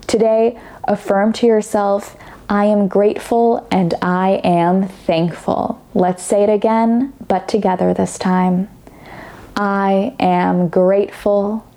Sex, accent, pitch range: female, American, 190-230 Hz